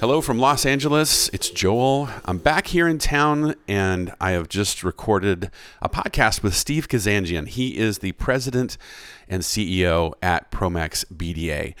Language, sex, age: English, male, 40-59